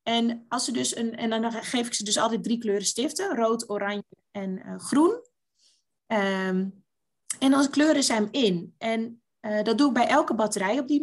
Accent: Dutch